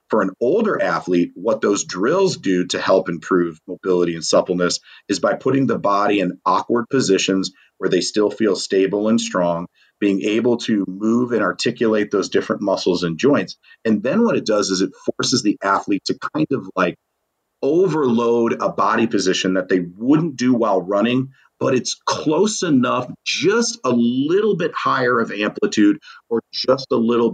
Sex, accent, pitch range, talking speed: male, American, 95-120 Hz, 175 wpm